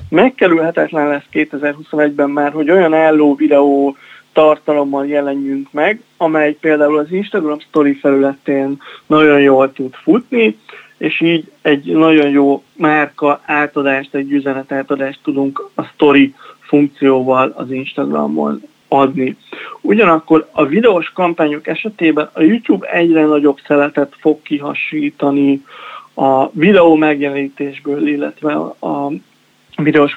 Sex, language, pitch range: male, Hungarian, 140-160 Hz